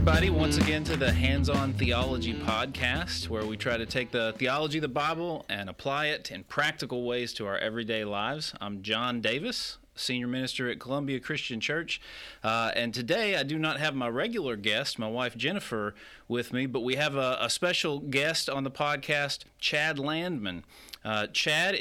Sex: male